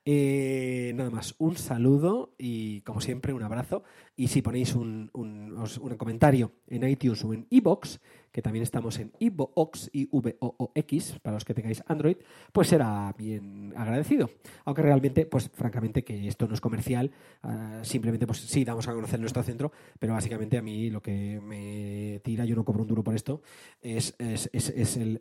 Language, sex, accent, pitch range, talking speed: Spanish, male, Spanish, 110-140 Hz, 180 wpm